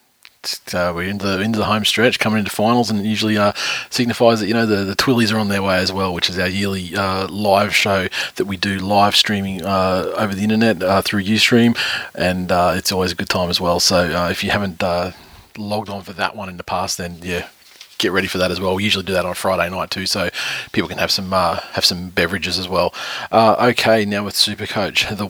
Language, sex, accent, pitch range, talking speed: English, male, Australian, 90-105 Hz, 245 wpm